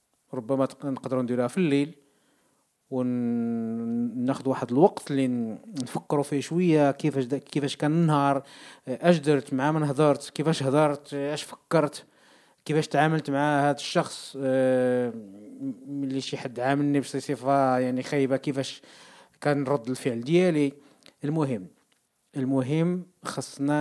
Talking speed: 110 wpm